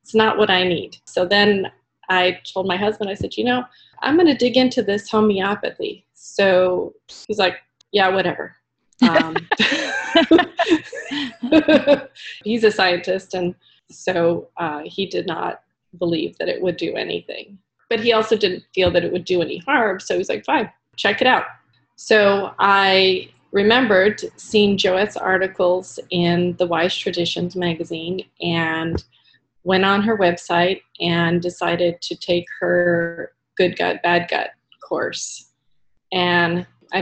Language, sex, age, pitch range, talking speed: English, female, 30-49, 175-205 Hz, 145 wpm